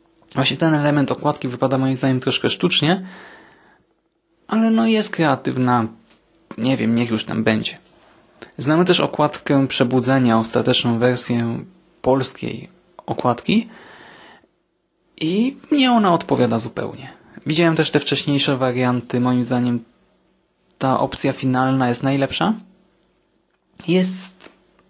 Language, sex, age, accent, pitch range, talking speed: Polish, male, 20-39, native, 125-155 Hz, 110 wpm